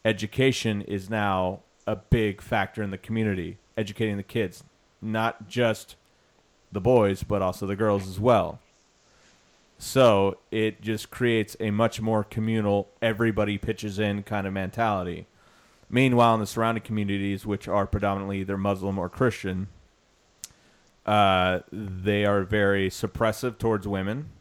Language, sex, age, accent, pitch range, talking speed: English, male, 30-49, American, 95-110 Hz, 135 wpm